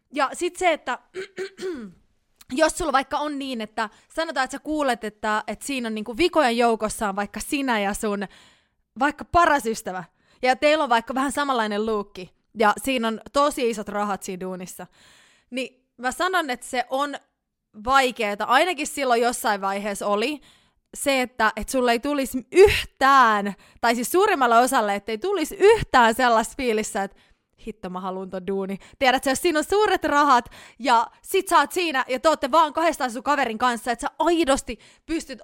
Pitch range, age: 220-290 Hz, 20-39